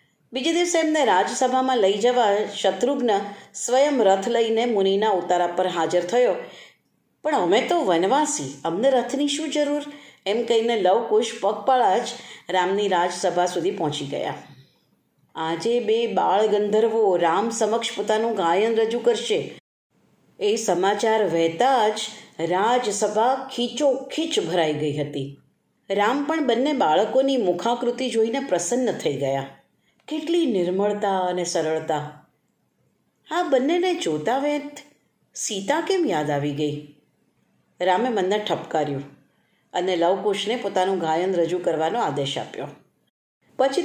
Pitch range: 185-260 Hz